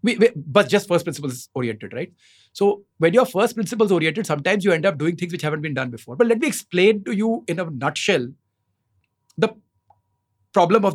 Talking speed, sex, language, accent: 180 wpm, male, English, Indian